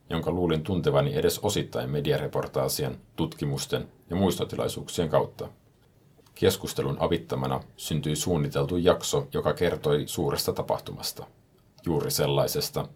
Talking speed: 95 wpm